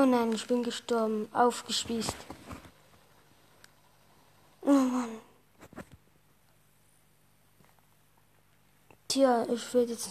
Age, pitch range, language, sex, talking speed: 20-39, 220-265 Hz, German, female, 70 wpm